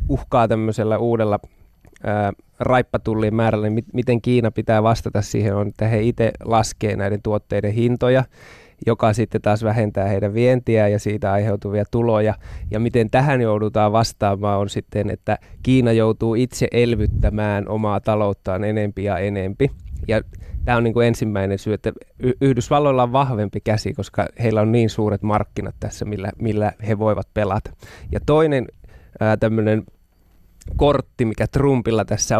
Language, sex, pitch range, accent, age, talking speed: Finnish, male, 105-120 Hz, native, 20-39, 145 wpm